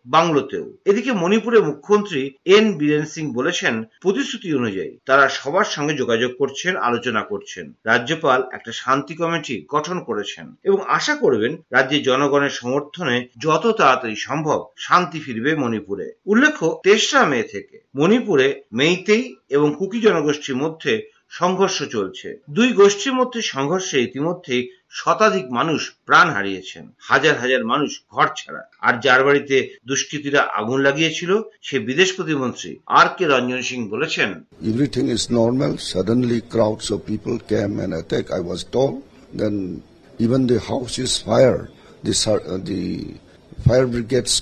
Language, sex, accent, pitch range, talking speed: Bengali, male, native, 110-170 Hz, 90 wpm